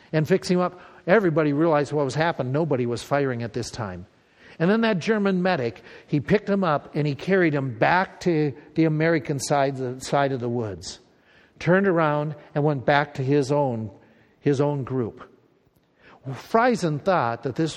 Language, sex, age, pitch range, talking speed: English, male, 60-79, 125-165 Hz, 180 wpm